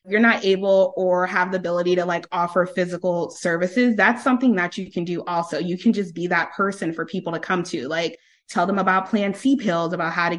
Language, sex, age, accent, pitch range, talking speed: English, female, 20-39, American, 175-205 Hz, 230 wpm